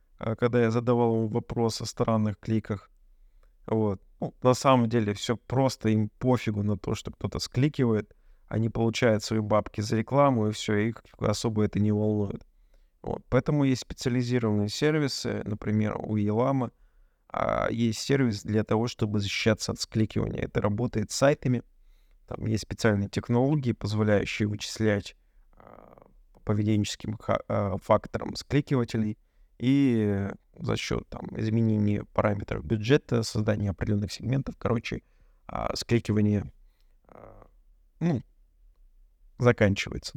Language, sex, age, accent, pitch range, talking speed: Russian, male, 20-39, native, 105-125 Hz, 115 wpm